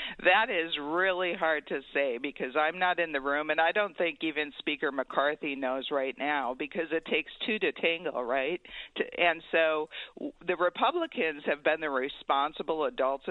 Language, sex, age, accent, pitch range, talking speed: English, female, 50-69, American, 150-210 Hz, 170 wpm